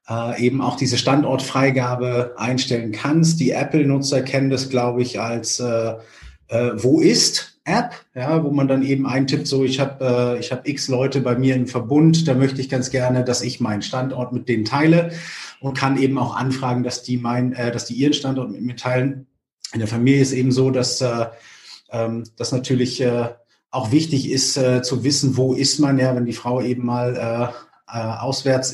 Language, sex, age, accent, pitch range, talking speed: German, male, 30-49, German, 120-135 Hz, 190 wpm